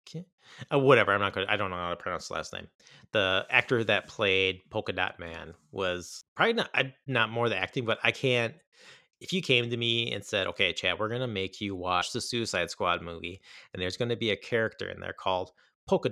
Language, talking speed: English, 225 wpm